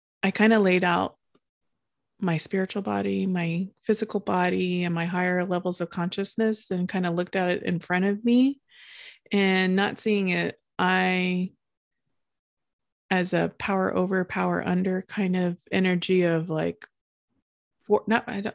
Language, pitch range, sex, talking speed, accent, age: English, 175-200 Hz, female, 140 wpm, American, 20-39